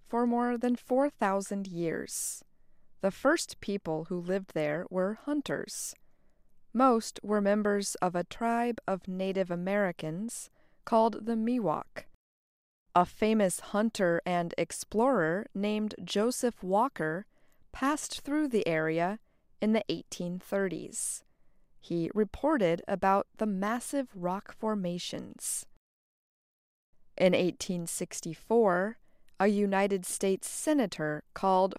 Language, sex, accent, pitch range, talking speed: English, female, American, 180-230 Hz, 100 wpm